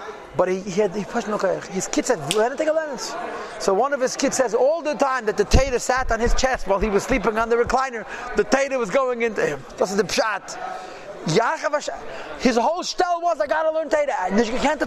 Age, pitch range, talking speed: 30-49, 225-300 Hz, 220 wpm